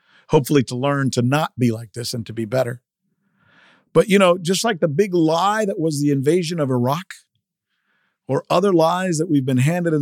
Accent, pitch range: American, 130-185 Hz